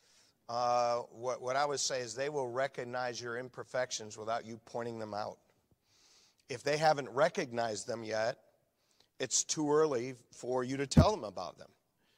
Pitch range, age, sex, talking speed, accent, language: 120-145 Hz, 50-69, male, 165 wpm, American, English